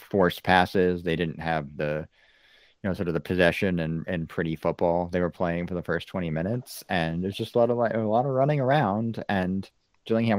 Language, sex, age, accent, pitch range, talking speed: English, male, 30-49, American, 80-110 Hz, 220 wpm